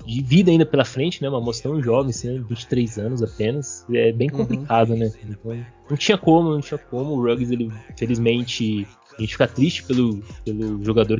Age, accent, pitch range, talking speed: 20-39, Brazilian, 110-130 Hz, 175 wpm